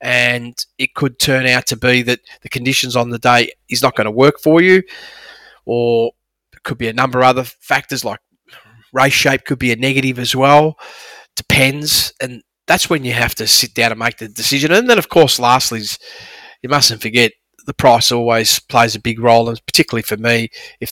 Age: 30-49